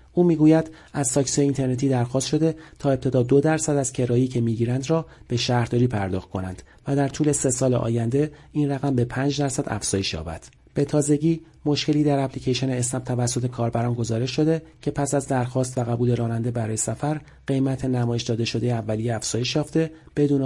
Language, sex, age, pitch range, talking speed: Persian, male, 40-59, 120-145 Hz, 175 wpm